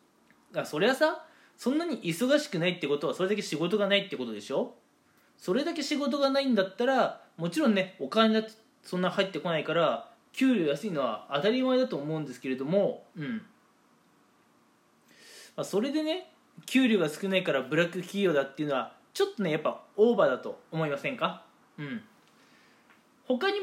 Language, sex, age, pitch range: Japanese, male, 20-39, 160-260 Hz